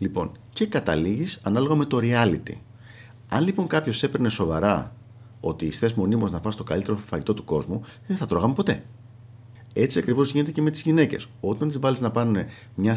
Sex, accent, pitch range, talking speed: male, native, 95-120 Hz, 180 wpm